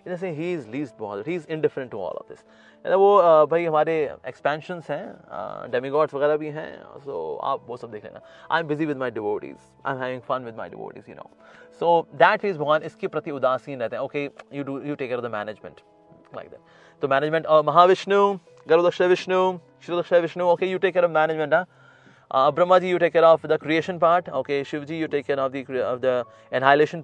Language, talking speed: English, 170 wpm